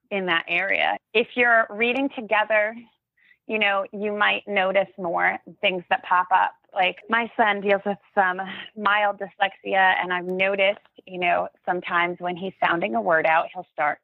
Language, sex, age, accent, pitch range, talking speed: English, female, 30-49, American, 180-215 Hz, 165 wpm